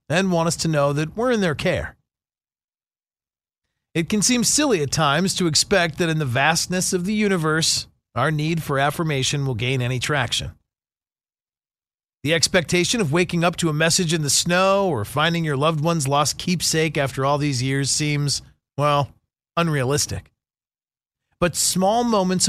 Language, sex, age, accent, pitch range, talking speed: English, male, 40-59, American, 135-180 Hz, 165 wpm